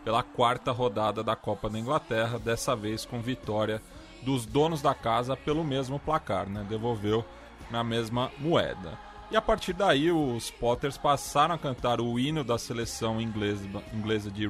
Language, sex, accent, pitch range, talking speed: Portuguese, male, Brazilian, 115-145 Hz, 155 wpm